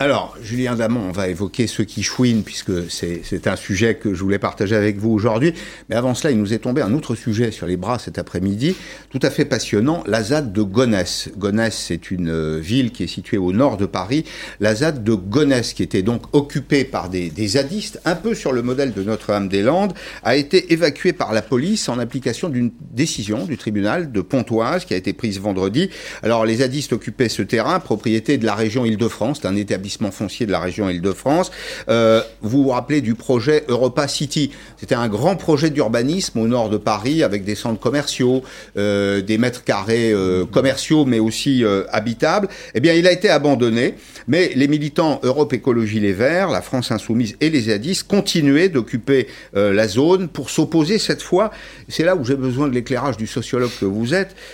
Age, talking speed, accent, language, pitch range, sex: 50-69, 200 wpm, French, French, 105-145 Hz, male